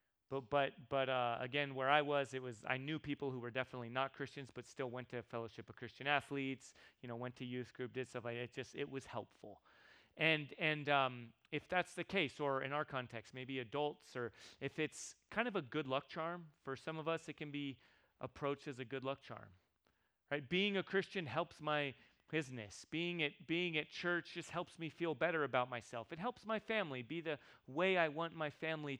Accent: American